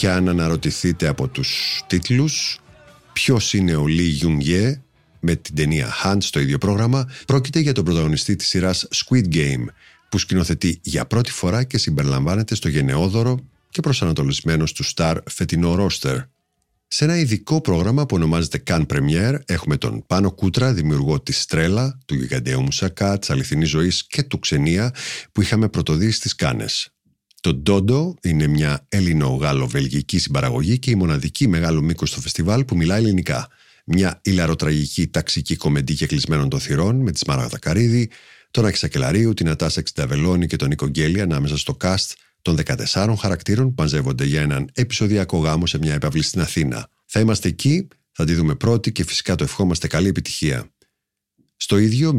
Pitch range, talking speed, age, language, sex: 80-115 Hz, 155 wpm, 50-69, Greek, male